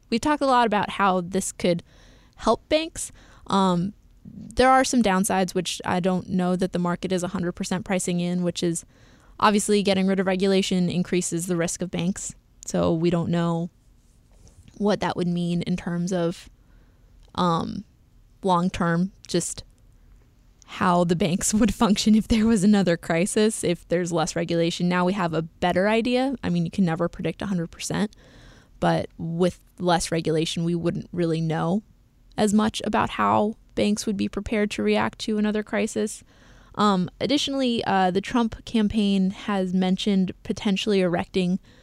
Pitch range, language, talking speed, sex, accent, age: 175-215 Hz, English, 160 wpm, female, American, 20-39